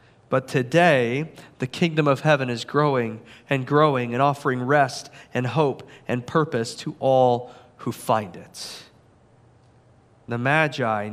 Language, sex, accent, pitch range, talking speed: English, male, American, 115-140 Hz, 130 wpm